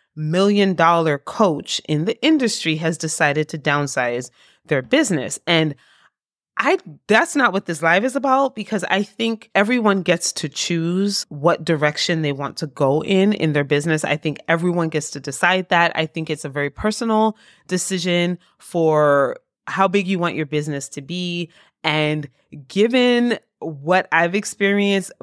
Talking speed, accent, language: 155 wpm, American, English